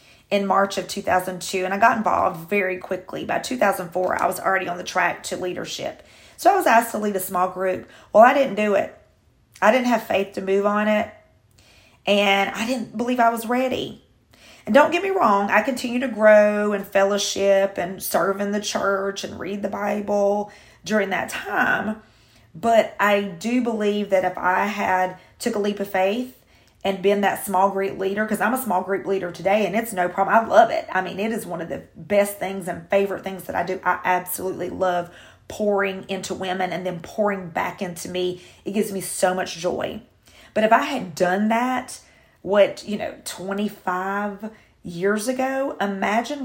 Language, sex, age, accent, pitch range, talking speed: English, female, 40-59, American, 185-215 Hz, 195 wpm